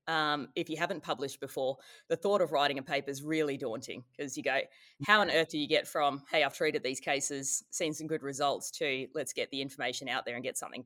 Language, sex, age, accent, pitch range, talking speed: English, female, 20-39, Australian, 140-165 Hz, 245 wpm